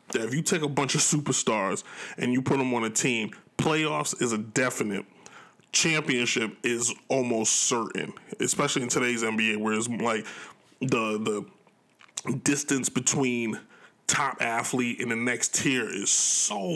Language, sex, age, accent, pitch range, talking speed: English, male, 20-39, American, 120-140 Hz, 150 wpm